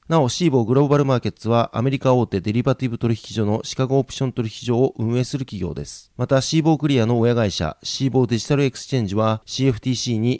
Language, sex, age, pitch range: Japanese, male, 30-49, 110-140 Hz